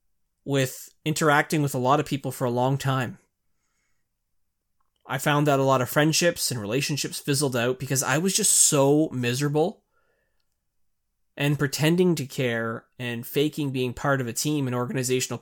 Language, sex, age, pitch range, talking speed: English, male, 20-39, 130-160 Hz, 160 wpm